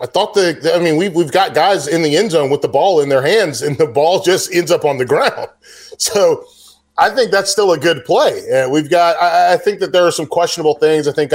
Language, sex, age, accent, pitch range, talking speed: English, male, 30-49, American, 130-190 Hz, 270 wpm